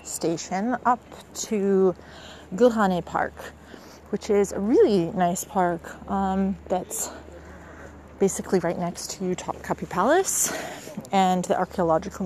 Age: 30-49